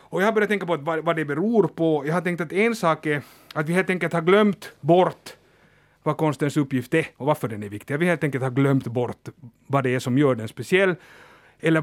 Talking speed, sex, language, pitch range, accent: 240 wpm, male, Swedish, 140-180 Hz, Finnish